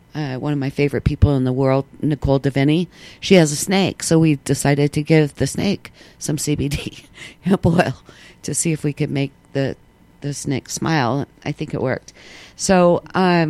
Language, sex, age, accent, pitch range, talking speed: English, female, 50-69, American, 140-175 Hz, 185 wpm